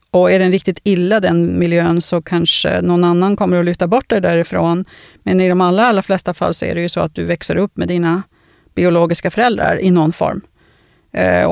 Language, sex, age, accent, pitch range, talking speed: Swedish, female, 40-59, native, 170-195 Hz, 215 wpm